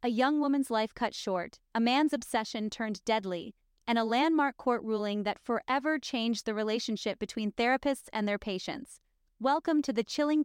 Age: 30-49